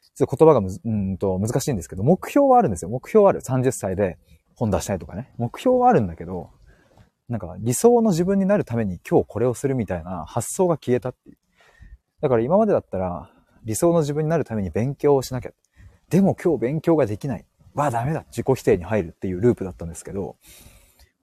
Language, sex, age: Japanese, male, 30-49